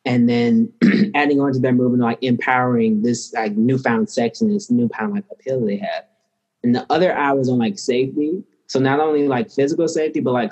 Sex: male